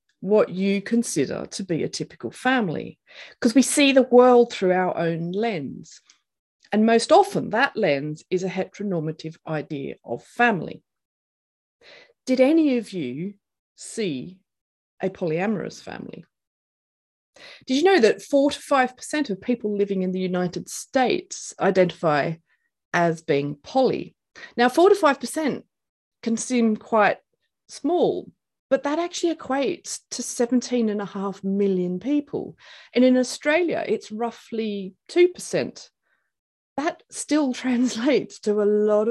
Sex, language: female, English